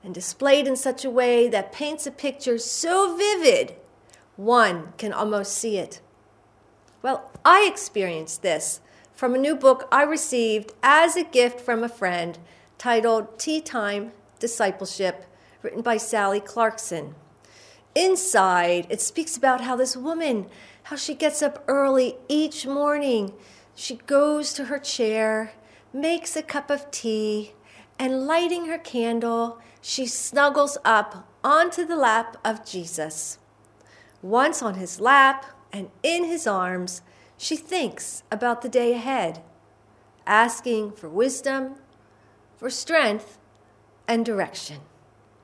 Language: English